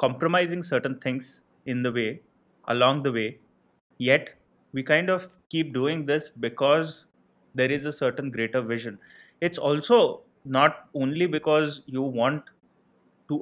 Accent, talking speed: Indian, 140 wpm